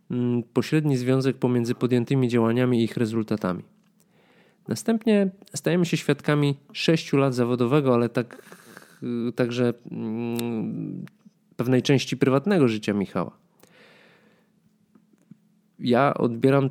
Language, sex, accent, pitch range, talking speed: Polish, male, native, 115-165 Hz, 90 wpm